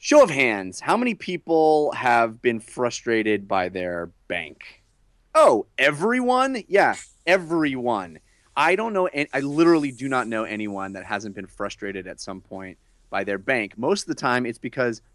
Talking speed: 160 wpm